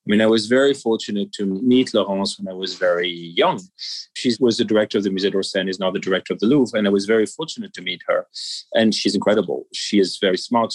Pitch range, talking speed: 95-125 Hz, 250 wpm